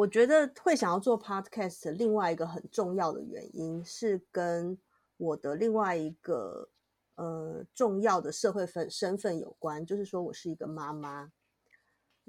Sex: female